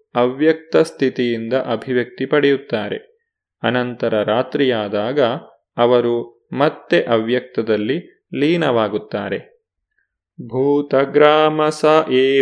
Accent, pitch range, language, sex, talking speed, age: native, 120-145 Hz, Kannada, male, 55 wpm, 30-49